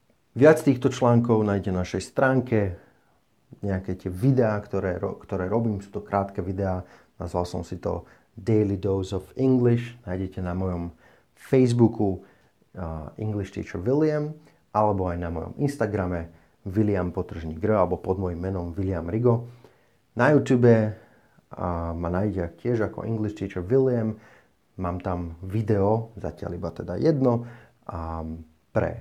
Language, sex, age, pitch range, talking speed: Slovak, male, 30-49, 90-120 Hz, 130 wpm